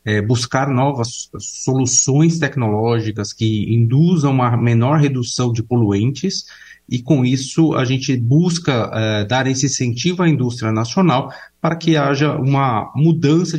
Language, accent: Portuguese, Brazilian